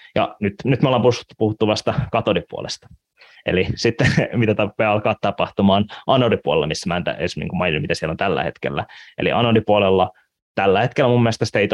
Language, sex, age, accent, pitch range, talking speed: Finnish, male, 20-39, native, 95-115 Hz, 165 wpm